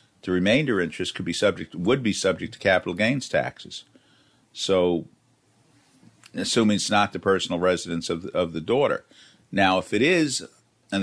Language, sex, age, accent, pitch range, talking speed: English, male, 50-69, American, 90-105 Hz, 165 wpm